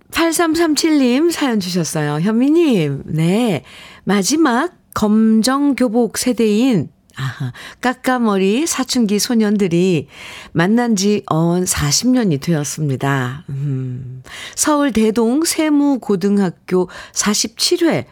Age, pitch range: 50-69, 160-235 Hz